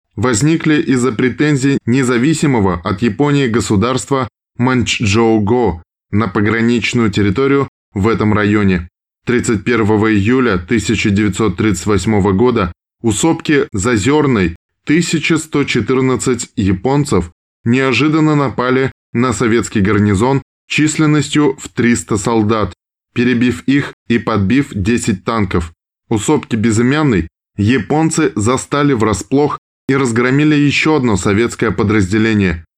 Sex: male